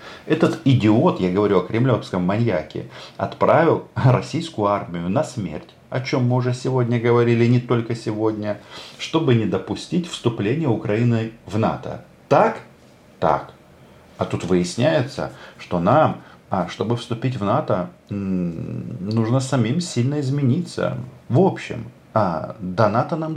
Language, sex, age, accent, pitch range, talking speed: Russian, male, 40-59, native, 105-130 Hz, 125 wpm